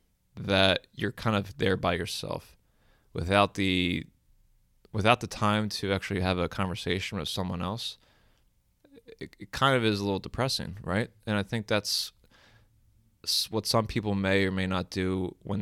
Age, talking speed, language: 20-39, 160 wpm, English